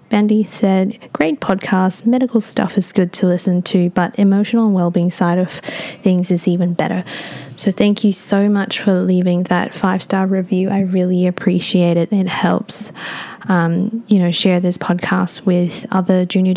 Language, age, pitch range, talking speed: English, 10-29, 180-210 Hz, 165 wpm